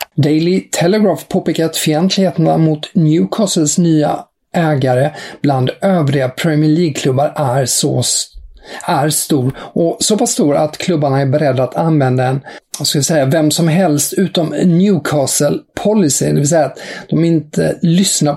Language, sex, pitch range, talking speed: English, male, 140-175 Hz, 140 wpm